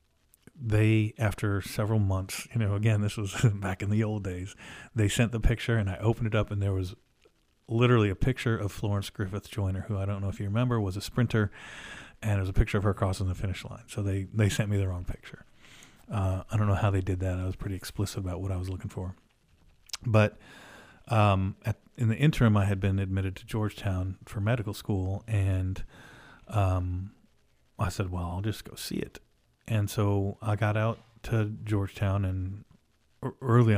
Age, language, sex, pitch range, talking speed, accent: 40-59, English, male, 95-110 Hz, 200 wpm, American